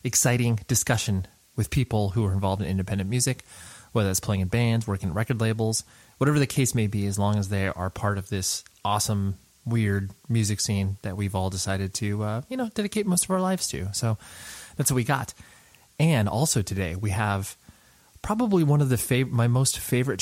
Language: English